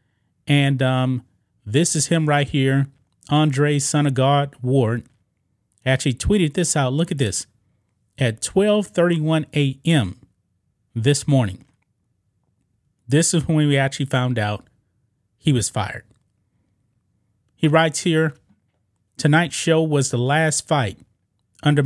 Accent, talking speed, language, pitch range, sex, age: American, 120 wpm, English, 110-150 Hz, male, 30-49